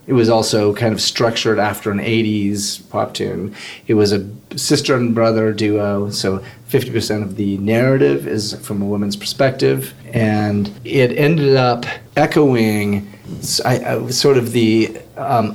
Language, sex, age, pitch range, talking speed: English, male, 30-49, 100-120 Hz, 145 wpm